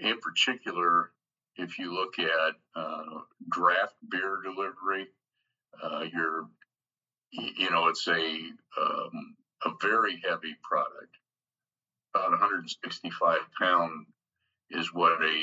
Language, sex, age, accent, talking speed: English, male, 50-69, American, 105 wpm